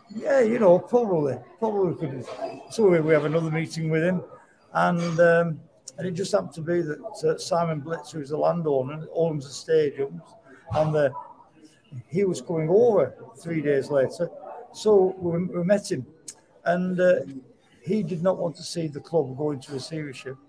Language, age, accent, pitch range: English, 60-79, British, 145-180 Hz